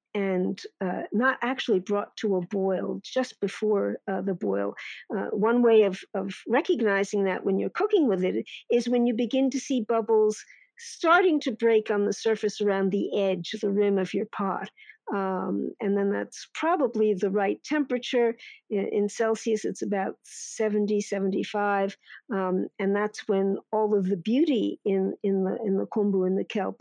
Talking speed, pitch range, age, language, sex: 175 wpm, 195-235 Hz, 50-69, English, female